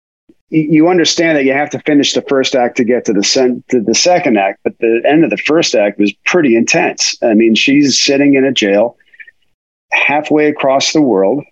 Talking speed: 210 wpm